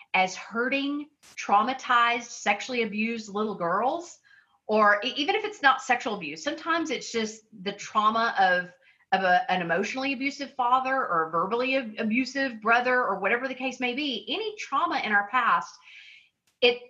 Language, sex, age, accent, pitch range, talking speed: English, female, 40-59, American, 205-270 Hz, 155 wpm